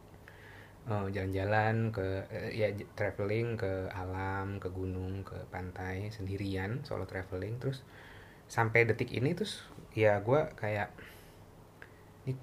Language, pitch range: Indonesian, 95-115 Hz